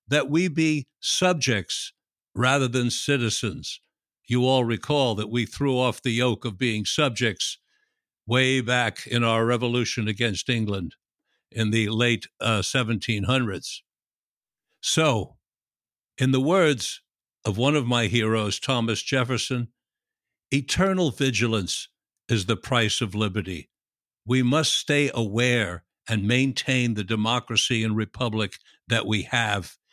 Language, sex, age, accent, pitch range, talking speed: English, male, 60-79, American, 110-140 Hz, 120 wpm